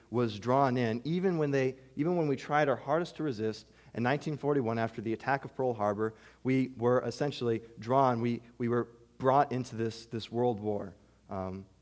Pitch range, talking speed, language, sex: 100-135 Hz, 185 wpm, English, male